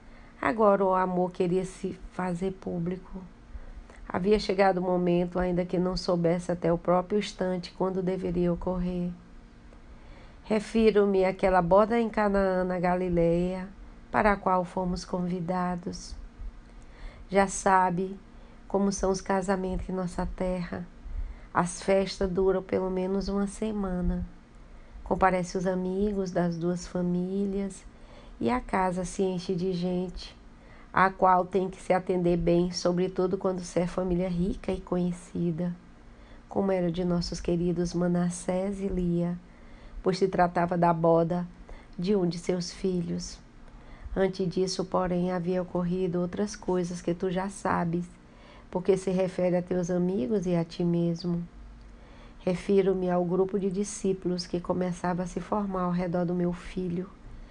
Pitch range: 175-190 Hz